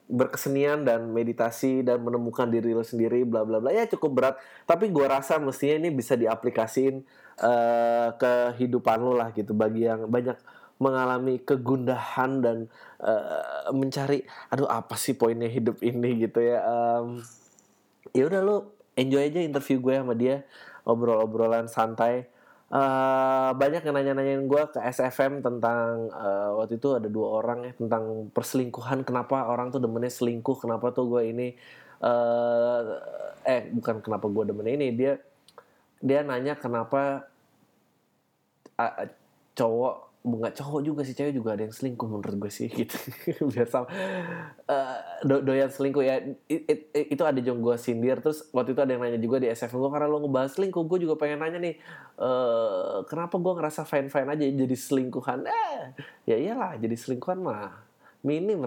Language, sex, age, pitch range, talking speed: Indonesian, male, 20-39, 120-145 Hz, 160 wpm